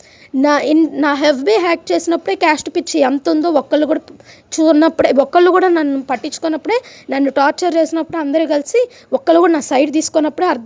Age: 20-39